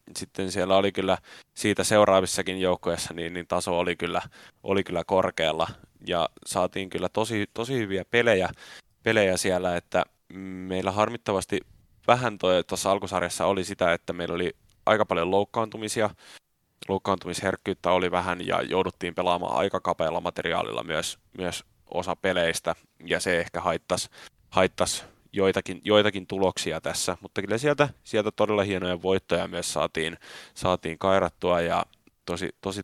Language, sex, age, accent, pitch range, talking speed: Finnish, male, 20-39, native, 90-100 Hz, 130 wpm